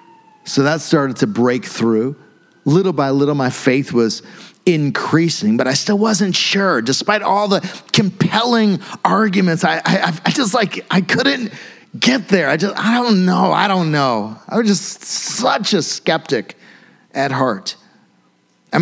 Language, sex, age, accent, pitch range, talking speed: English, male, 40-59, American, 140-205 Hz, 155 wpm